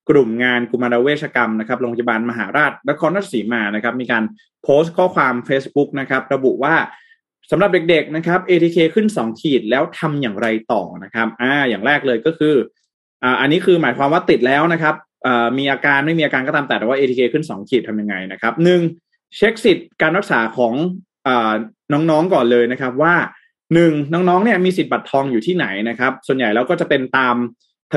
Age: 20-39